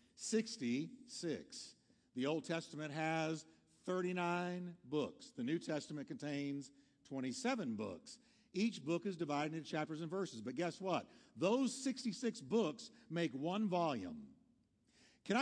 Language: English